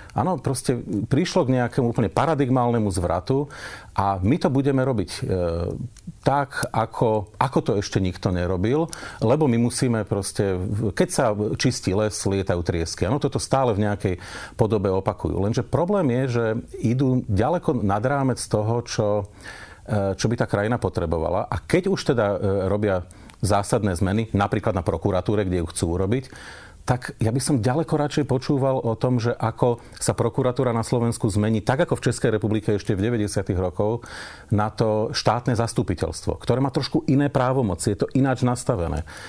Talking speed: 160 wpm